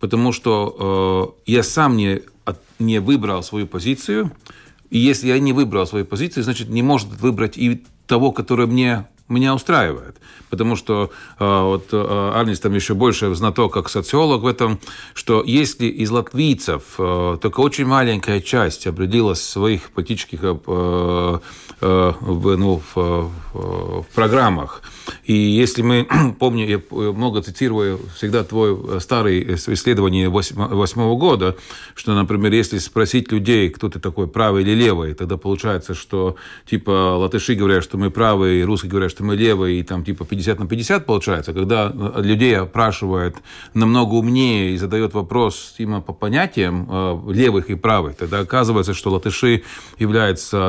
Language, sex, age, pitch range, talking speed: Russian, male, 40-59, 95-120 Hz, 145 wpm